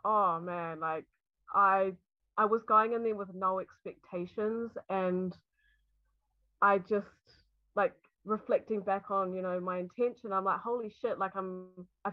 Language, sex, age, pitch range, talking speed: English, female, 20-39, 185-215 Hz, 150 wpm